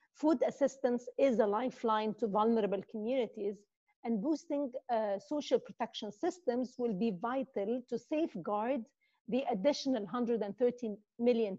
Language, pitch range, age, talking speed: English, 220-265 Hz, 50-69, 120 wpm